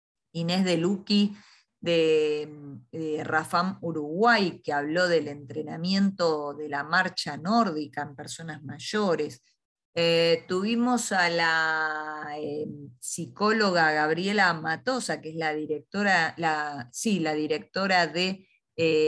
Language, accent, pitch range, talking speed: Spanish, Argentinian, 150-185 Hz, 115 wpm